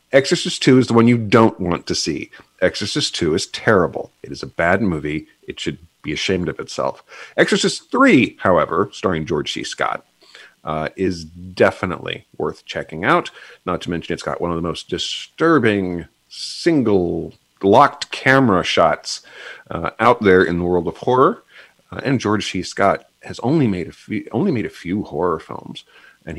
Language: English